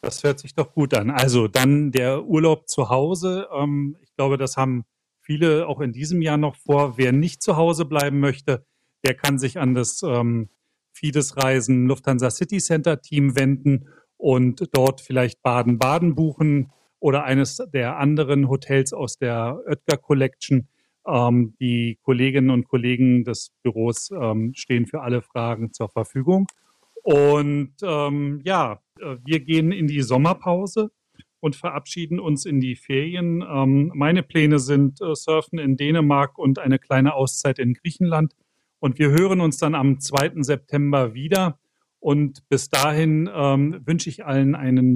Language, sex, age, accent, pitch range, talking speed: German, male, 40-59, German, 130-155 Hz, 150 wpm